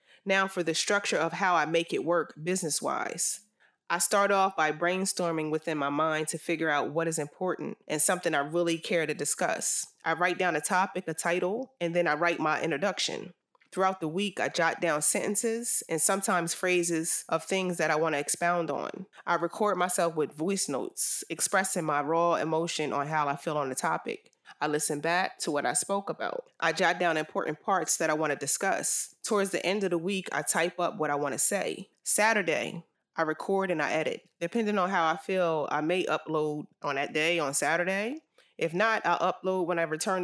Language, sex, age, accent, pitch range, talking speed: English, female, 30-49, American, 155-190 Hz, 205 wpm